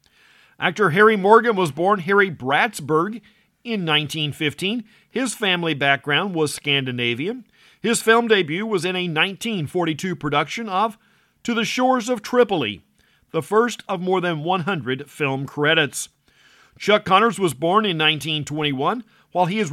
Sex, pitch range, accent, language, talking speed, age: male, 155-210 Hz, American, English, 135 wpm, 50-69